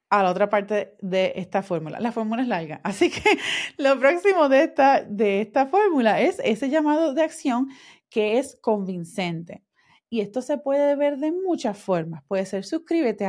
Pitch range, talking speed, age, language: 200-285 Hz, 170 wpm, 30-49, Spanish